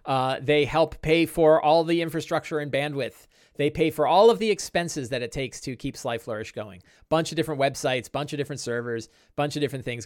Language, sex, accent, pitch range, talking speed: English, male, American, 115-155 Hz, 220 wpm